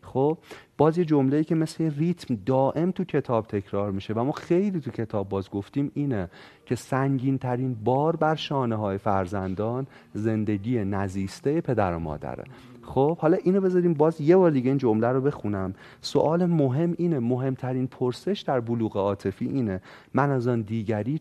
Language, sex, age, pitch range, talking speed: Persian, male, 40-59, 105-145 Hz, 165 wpm